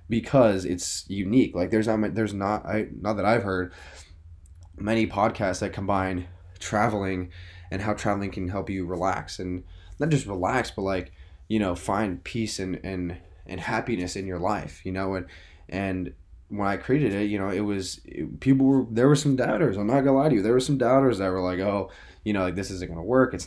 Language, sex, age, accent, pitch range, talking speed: English, male, 10-29, American, 90-115 Hz, 210 wpm